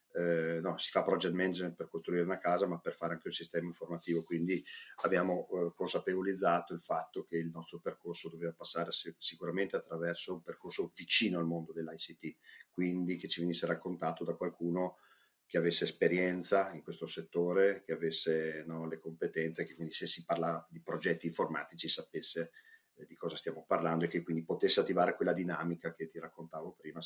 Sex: male